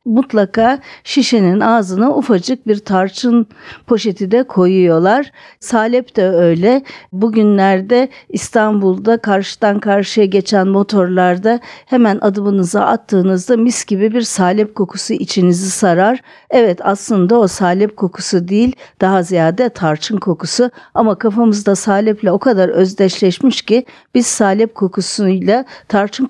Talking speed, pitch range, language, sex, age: 110 wpm, 185-235 Hz, Turkish, female, 50-69